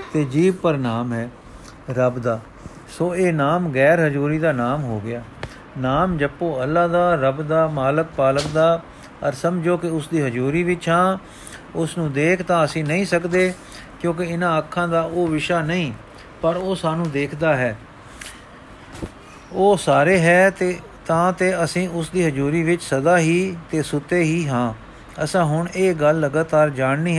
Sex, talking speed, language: male, 165 wpm, Punjabi